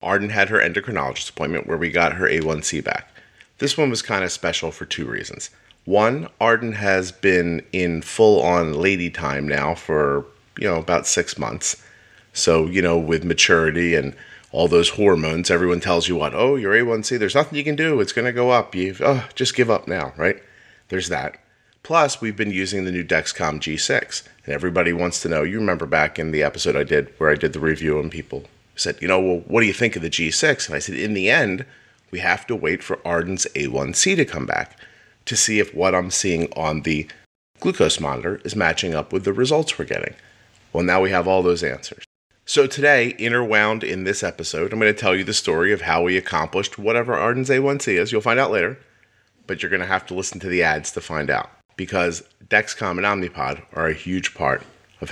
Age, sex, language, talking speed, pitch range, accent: 30-49, male, English, 215 wpm, 85-115 Hz, American